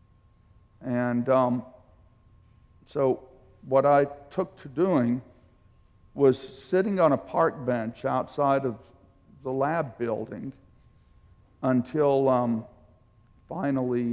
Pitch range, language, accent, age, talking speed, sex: 115-135 Hz, English, American, 50-69, 95 wpm, male